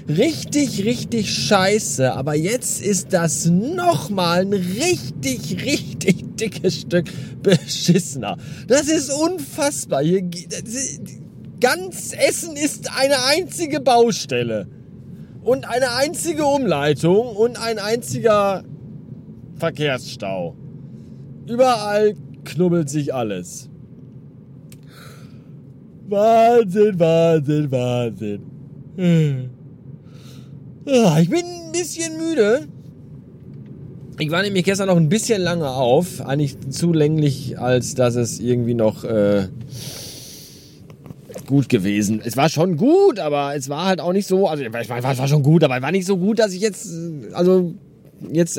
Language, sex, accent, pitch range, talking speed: German, male, German, 135-190 Hz, 115 wpm